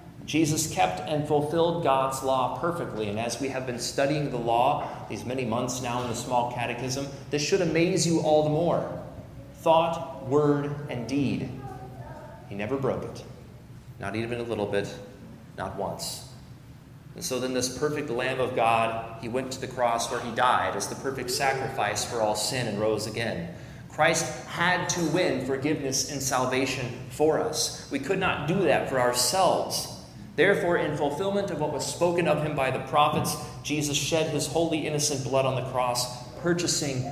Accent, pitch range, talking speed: American, 125-155 Hz, 175 wpm